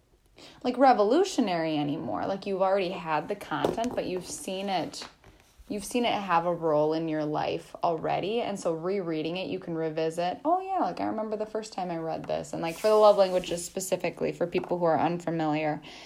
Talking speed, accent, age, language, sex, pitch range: 200 wpm, American, 10-29, English, female, 160-210 Hz